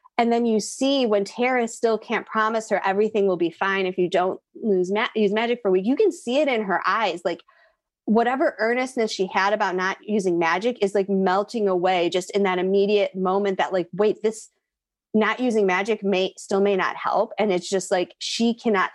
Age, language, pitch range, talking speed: 30-49, English, 190-230 Hz, 210 wpm